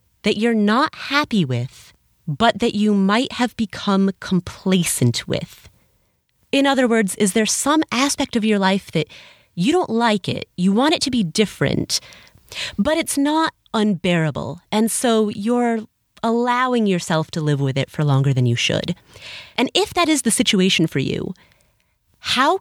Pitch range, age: 165-240 Hz, 30-49